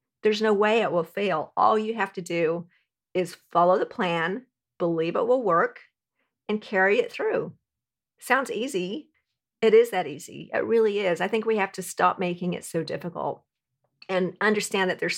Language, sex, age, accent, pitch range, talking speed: English, female, 50-69, American, 175-225 Hz, 180 wpm